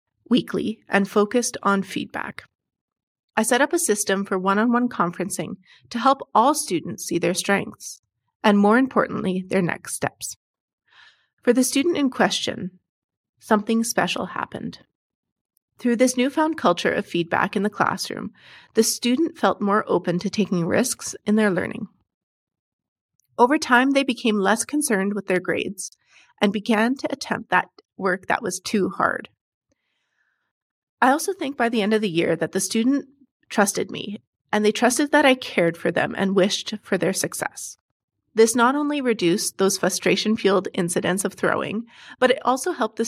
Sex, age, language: female, 30-49, English